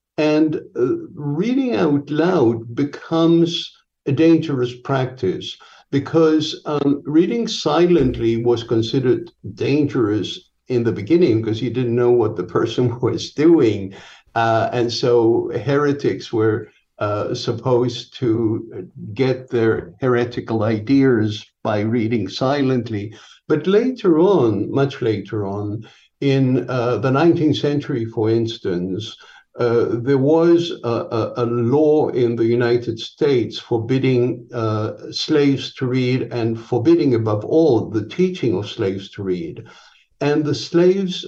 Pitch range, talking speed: 115-150 Hz, 120 wpm